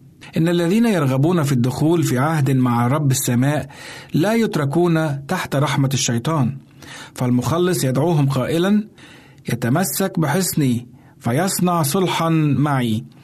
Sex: male